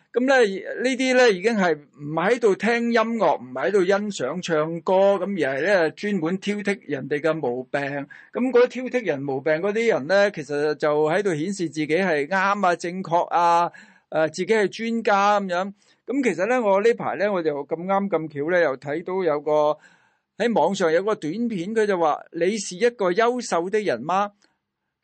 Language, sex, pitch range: Chinese, male, 160-225 Hz